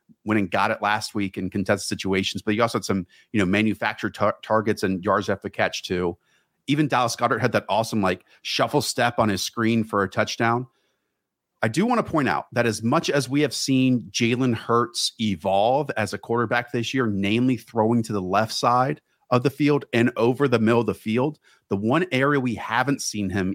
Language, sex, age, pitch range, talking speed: English, male, 40-59, 100-120 Hz, 215 wpm